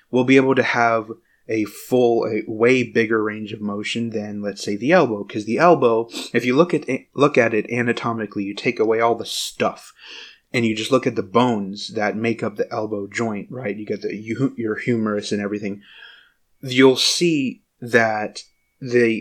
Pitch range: 105-120 Hz